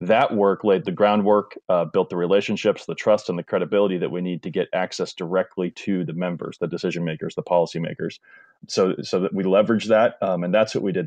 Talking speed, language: 230 wpm, English